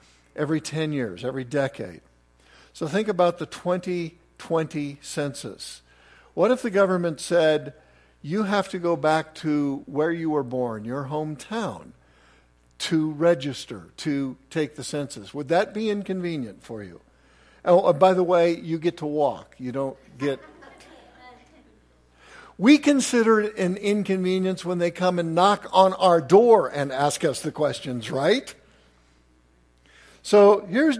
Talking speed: 140 wpm